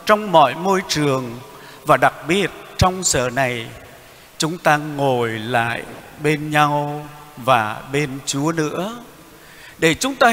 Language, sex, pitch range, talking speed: Vietnamese, male, 150-220 Hz, 135 wpm